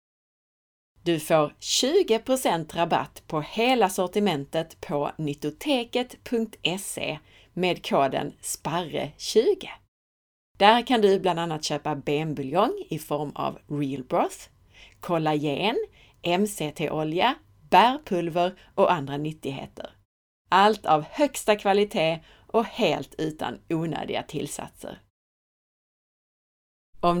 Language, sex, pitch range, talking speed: Swedish, female, 145-210 Hz, 90 wpm